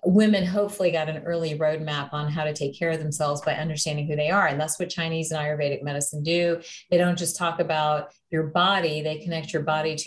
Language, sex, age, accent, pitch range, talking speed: English, female, 30-49, American, 155-180 Hz, 225 wpm